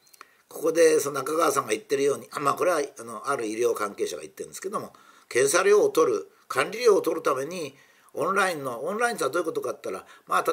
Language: Japanese